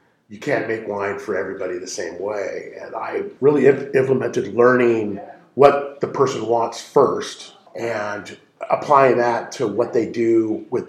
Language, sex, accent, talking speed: English, male, American, 155 wpm